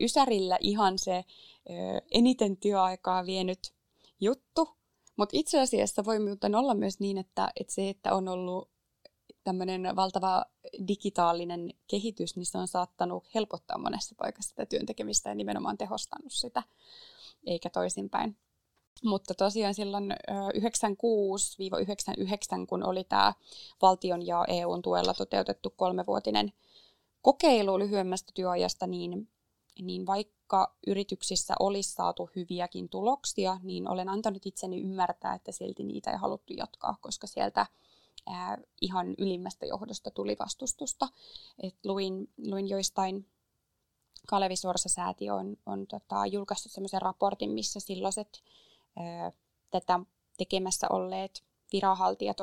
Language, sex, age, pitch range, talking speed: Finnish, female, 20-39, 180-205 Hz, 110 wpm